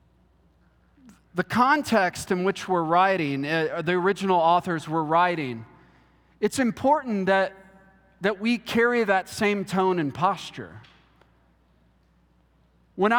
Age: 40-59